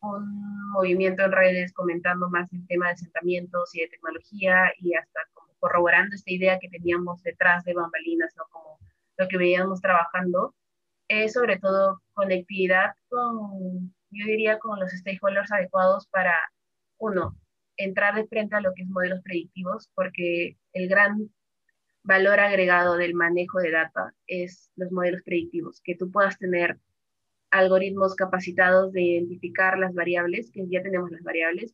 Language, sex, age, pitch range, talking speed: Spanish, female, 20-39, 175-190 Hz, 155 wpm